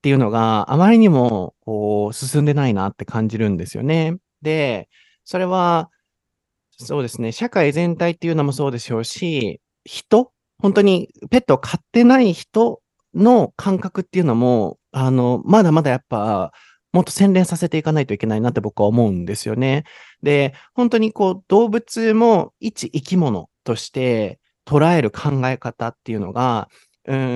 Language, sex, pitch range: Japanese, male, 120-185 Hz